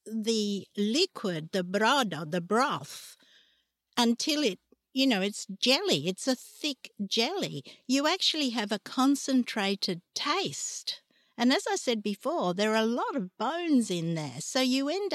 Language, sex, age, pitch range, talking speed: Italian, female, 60-79, 195-275 Hz, 150 wpm